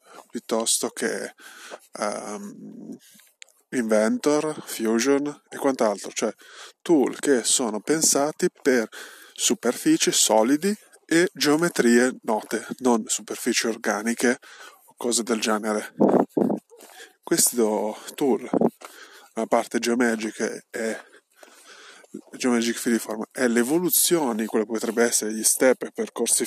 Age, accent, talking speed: 20-39, native, 95 wpm